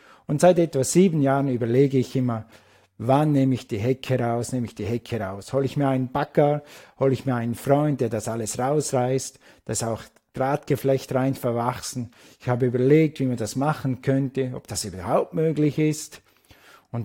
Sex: male